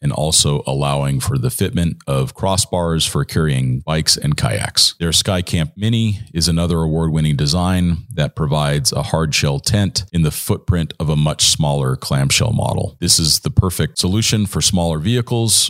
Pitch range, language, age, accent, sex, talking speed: 80-100 Hz, English, 40-59, American, male, 165 wpm